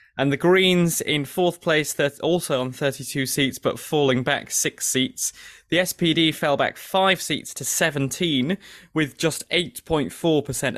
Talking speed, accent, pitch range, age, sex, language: 145 wpm, British, 135-170 Hz, 20-39, male, English